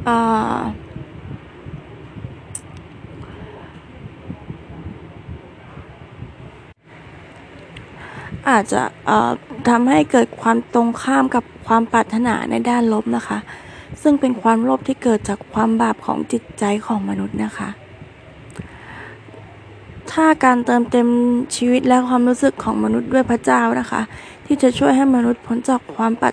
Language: English